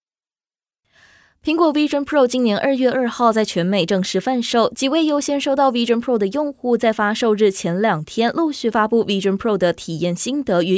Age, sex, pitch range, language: 20-39, female, 190-250 Hz, Chinese